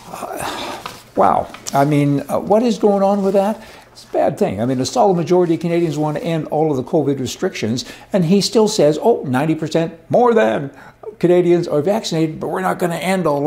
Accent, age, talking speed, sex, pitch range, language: American, 60-79, 215 wpm, male, 135-180 Hz, English